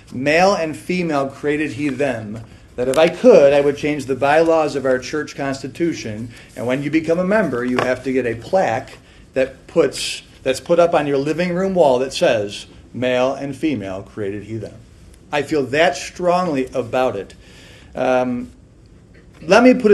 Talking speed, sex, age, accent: 180 wpm, male, 40-59, American